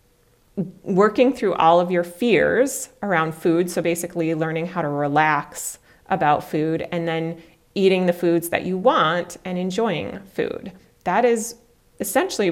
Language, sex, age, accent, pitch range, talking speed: English, female, 30-49, American, 160-195 Hz, 145 wpm